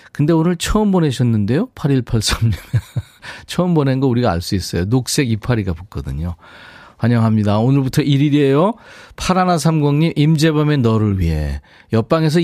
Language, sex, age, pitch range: Korean, male, 40-59, 100-145 Hz